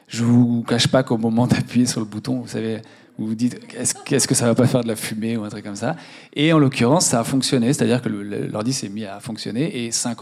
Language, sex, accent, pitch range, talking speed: French, male, French, 110-135 Hz, 265 wpm